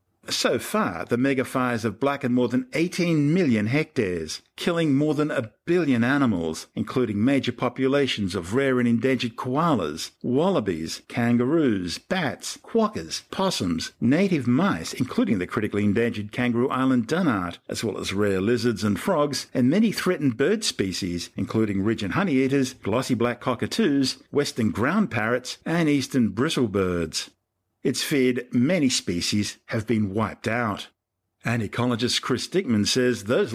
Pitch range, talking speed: 105-135 Hz, 140 wpm